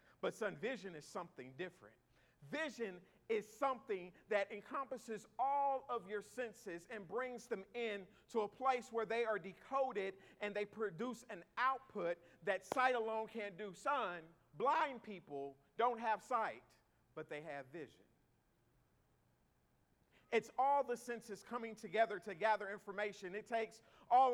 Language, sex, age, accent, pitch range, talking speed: English, male, 50-69, American, 185-235 Hz, 145 wpm